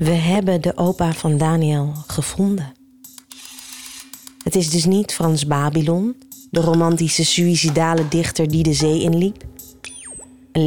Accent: Dutch